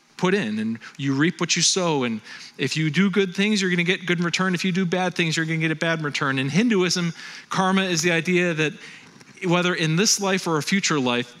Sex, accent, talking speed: male, American, 255 wpm